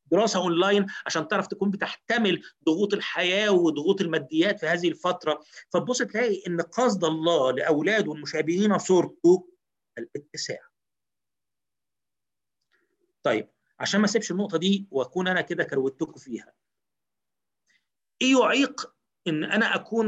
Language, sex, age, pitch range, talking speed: Arabic, male, 50-69, 165-215 Hz, 115 wpm